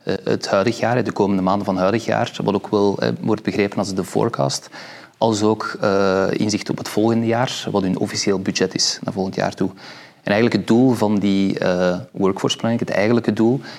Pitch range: 95-105 Hz